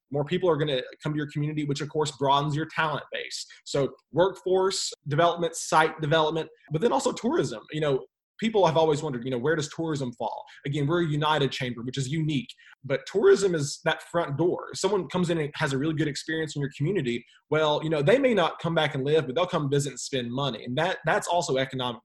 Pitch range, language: 130-160 Hz, English